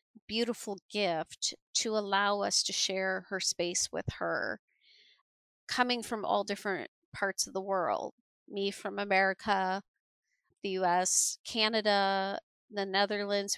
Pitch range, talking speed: 185-215 Hz, 125 wpm